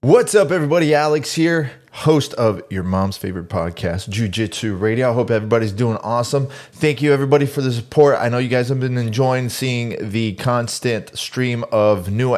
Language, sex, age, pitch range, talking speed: English, male, 20-39, 105-125 Hz, 180 wpm